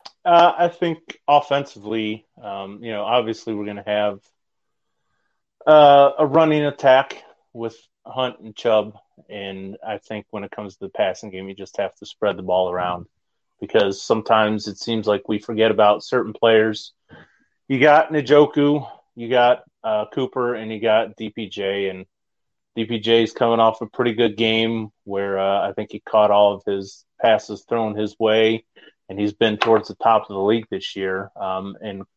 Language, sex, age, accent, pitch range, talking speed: English, male, 30-49, American, 105-120 Hz, 175 wpm